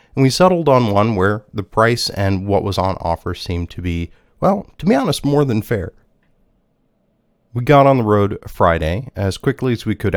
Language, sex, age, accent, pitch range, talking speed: English, male, 30-49, American, 85-110 Hz, 200 wpm